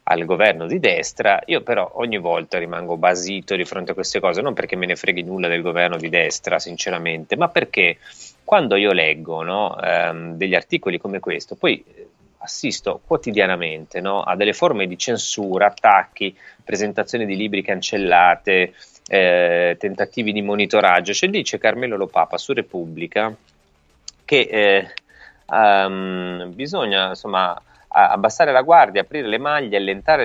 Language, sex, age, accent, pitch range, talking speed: Italian, male, 30-49, native, 90-150 Hz, 145 wpm